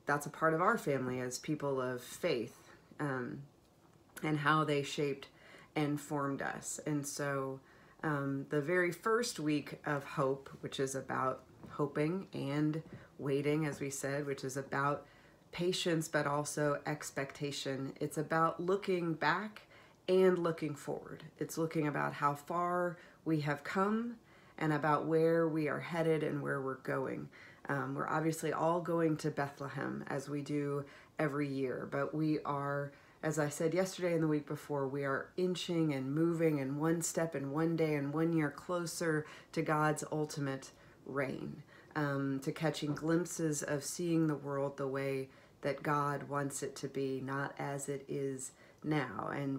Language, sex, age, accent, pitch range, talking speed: English, female, 30-49, American, 140-160 Hz, 160 wpm